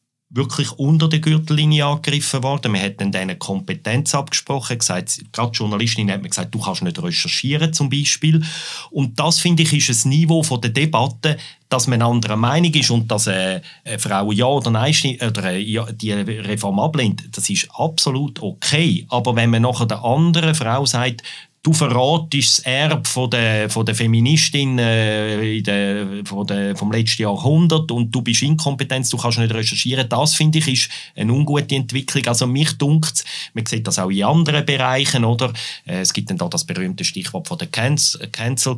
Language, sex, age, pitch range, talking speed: German, male, 40-59, 115-150 Hz, 175 wpm